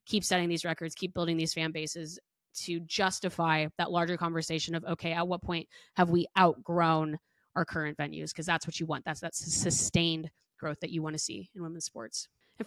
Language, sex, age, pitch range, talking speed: English, female, 20-39, 165-205 Hz, 205 wpm